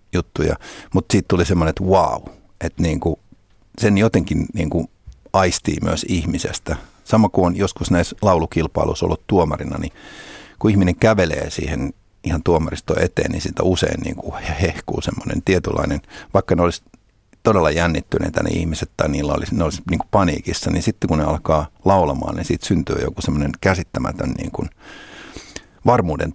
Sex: male